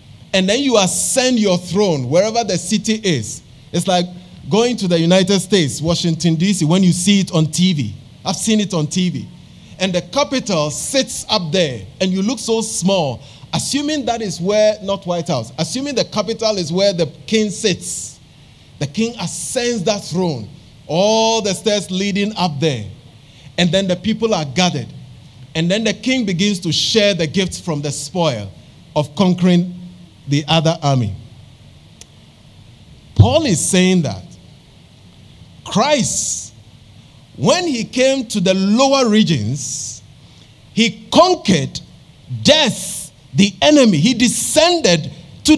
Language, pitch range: English, 155-220 Hz